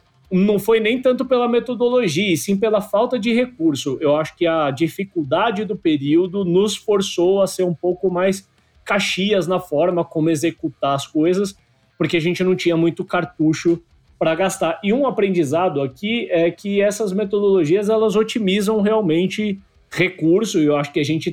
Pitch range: 155-205 Hz